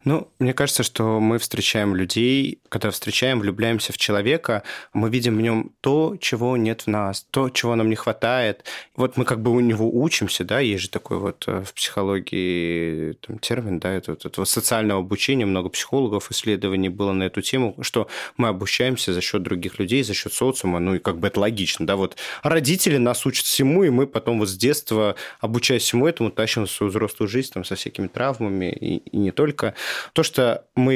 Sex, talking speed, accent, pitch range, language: male, 190 wpm, native, 100-130 Hz, Russian